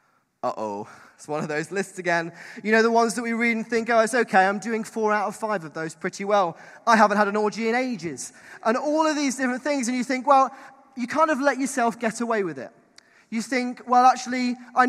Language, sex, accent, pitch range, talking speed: English, male, British, 185-245 Hz, 245 wpm